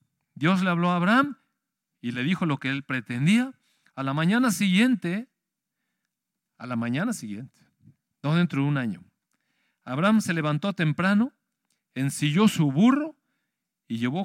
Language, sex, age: Spanish, male, 40-59